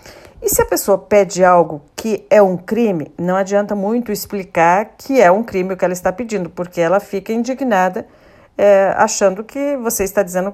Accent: Brazilian